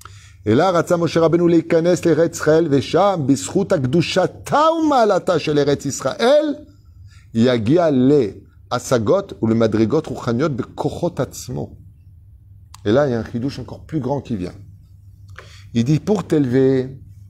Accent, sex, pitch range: French, male, 100-170 Hz